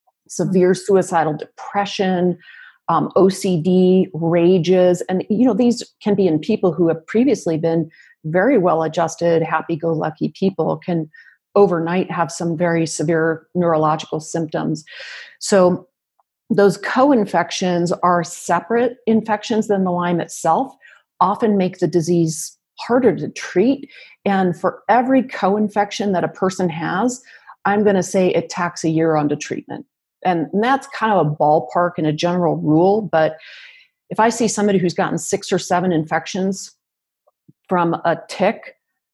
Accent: American